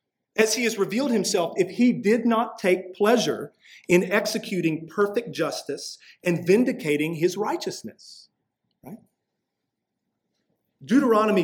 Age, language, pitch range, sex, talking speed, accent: 40-59, English, 155-205 Hz, male, 110 wpm, American